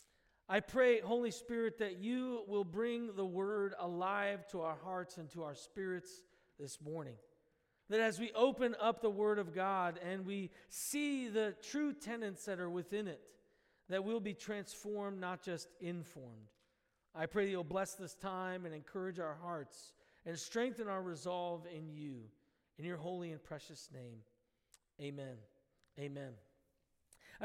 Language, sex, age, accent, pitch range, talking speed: English, male, 40-59, American, 180-240 Hz, 155 wpm